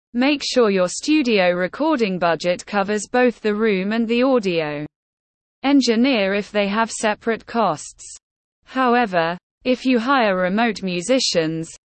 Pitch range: 180-250 Hz